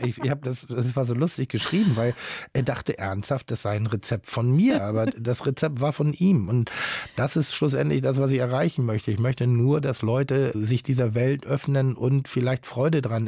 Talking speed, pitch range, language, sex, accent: 210 wpm, 115-135 Hz, German, male, German